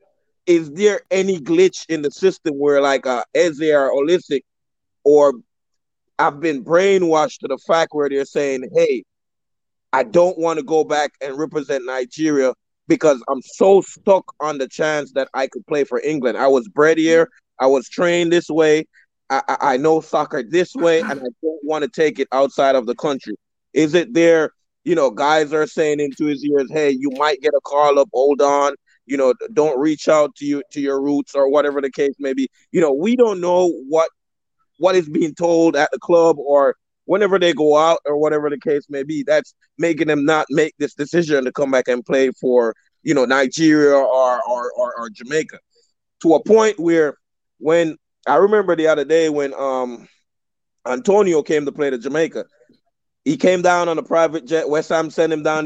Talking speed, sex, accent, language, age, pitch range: 200 wpm, male, American, English, 30-49, 140-170 Hz